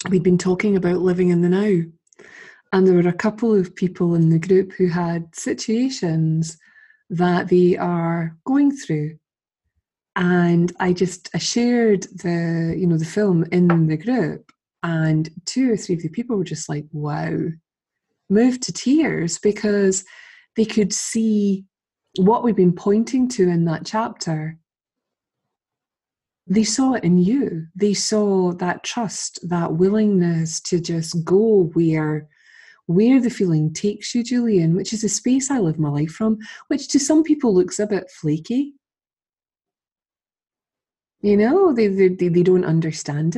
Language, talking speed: English, 150 wpm